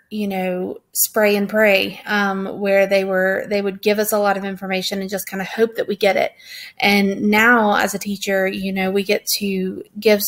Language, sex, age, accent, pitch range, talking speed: English, female, 30-49, American, 195-210 Hz, 215 wpm